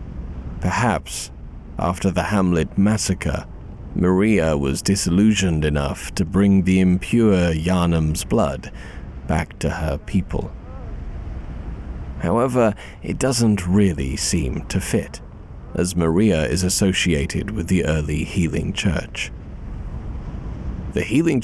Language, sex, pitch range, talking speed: English, male, 75-100 Hz, 105 wpm